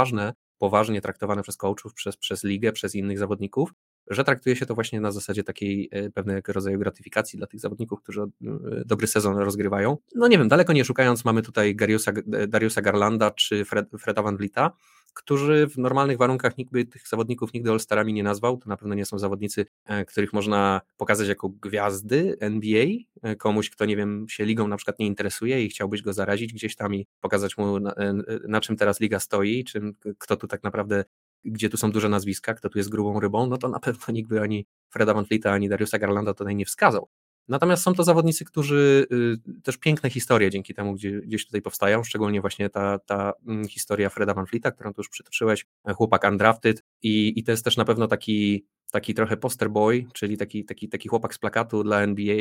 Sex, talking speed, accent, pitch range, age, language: male, 195 wpm, native, 100-115 Hz, 20-39, Polish